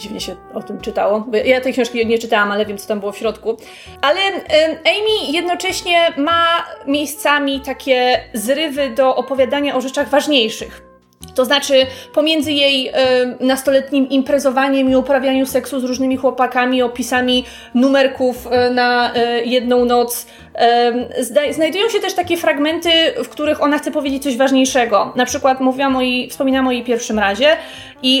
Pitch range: 245-295 Hz